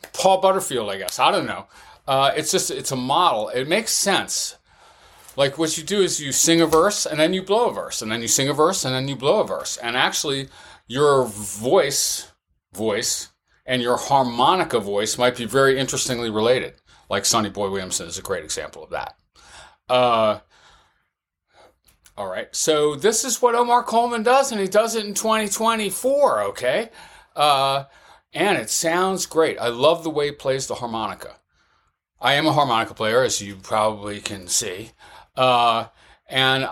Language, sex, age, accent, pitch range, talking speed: English, male, 40-59, American, 115-165 Hz, 180 wpm